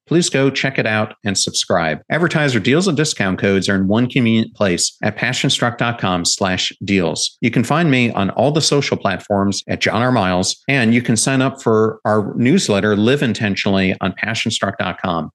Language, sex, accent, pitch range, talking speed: English, male, American, 95-125 Hz, 170 wpm